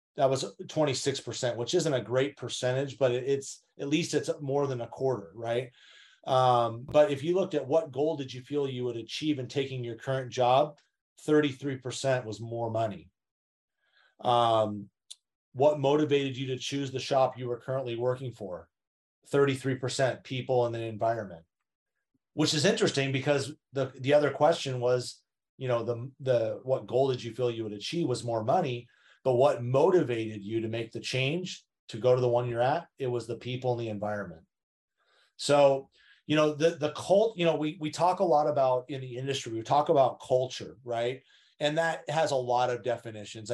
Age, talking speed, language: 30-49, 185 wpm, English